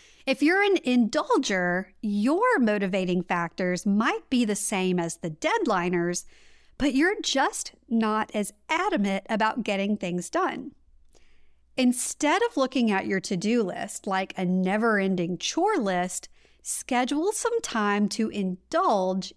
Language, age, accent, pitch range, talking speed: English, 50-69, American, 190-280 Hz, 125 wpm